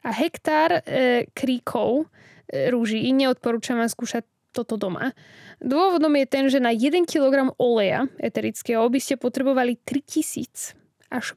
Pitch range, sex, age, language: 230-275 Hz, female, 10-29, Slovak